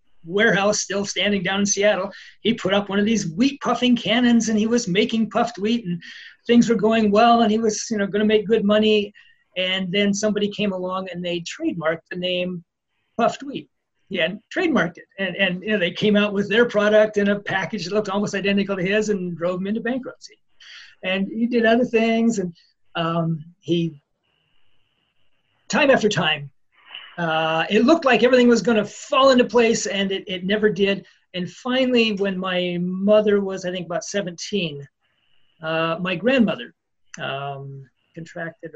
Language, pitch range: English, 160-215 Hz